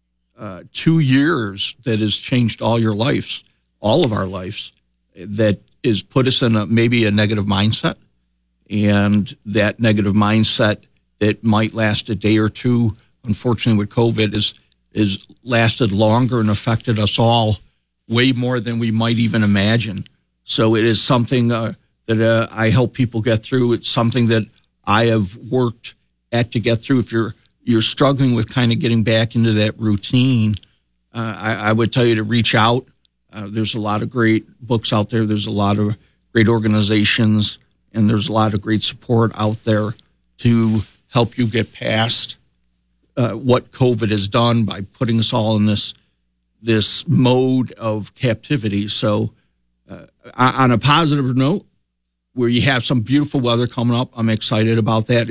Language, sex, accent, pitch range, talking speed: English, male, American, 105-120 Hz, 170 wpm